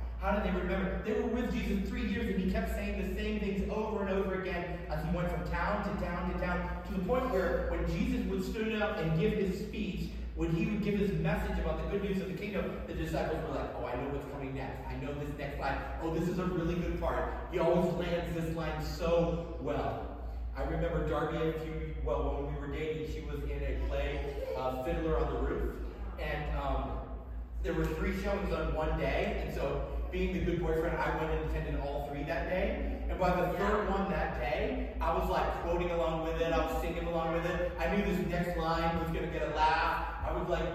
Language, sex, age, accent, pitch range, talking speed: English, male, 30-49, American, 155-190 Hz, 235 wpm